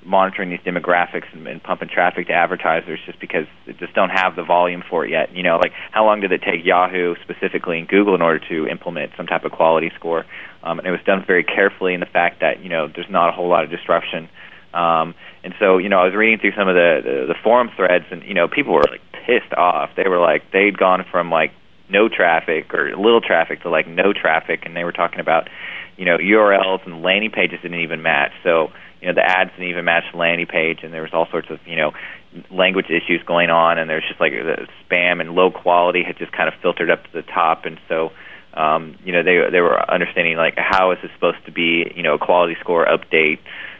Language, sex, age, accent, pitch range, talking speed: English, male, 30-49, American, 85-95 Hz, 245 wpm